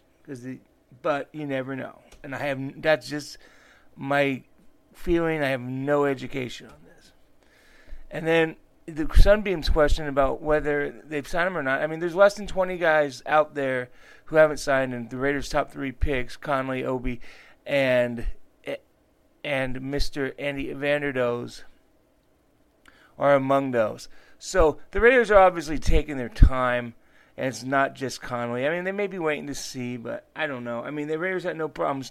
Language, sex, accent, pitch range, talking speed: English, male, American, 130-155 Hz, 170 wpm